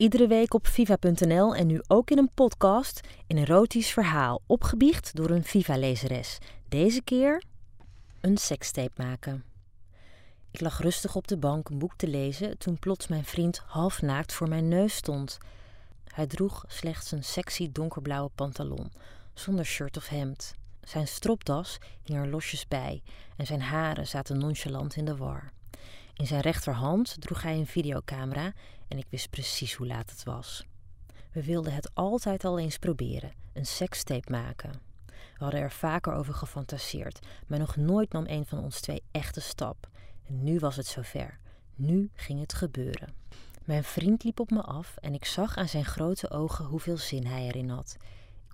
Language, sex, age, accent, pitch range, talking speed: Dutch, female, 30-49, Dutch, 120-170 Hz, 170 wpm